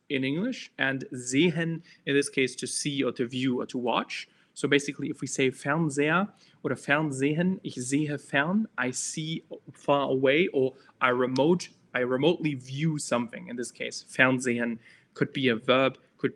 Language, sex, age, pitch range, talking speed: German, male, 20-39, 125-155 Hz, 165 wpm